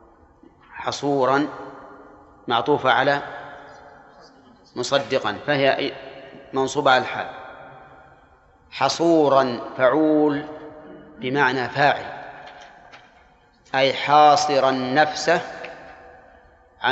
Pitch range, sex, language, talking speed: 130-145 Hz, male, Arabic, 55 wpm